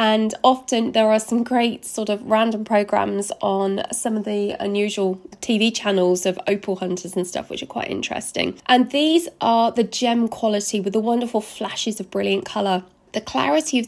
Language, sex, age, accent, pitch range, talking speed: English, female, 20-39, British, 200-240 Hz, 180 wpm